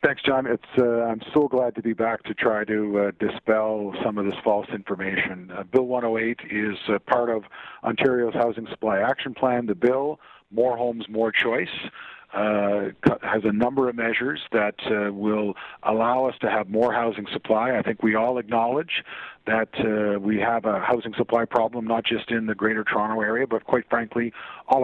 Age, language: 40-59, English